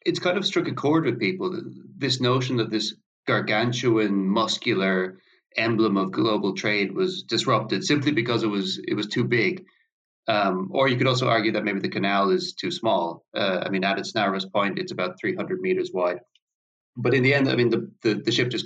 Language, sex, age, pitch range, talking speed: English, male, 30-49, 105-140 Hz, 205 wpm